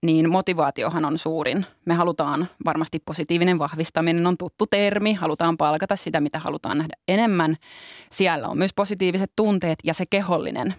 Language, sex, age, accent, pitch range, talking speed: Finnish, female, 20-39, native, 160-200 Hz, 150 wpm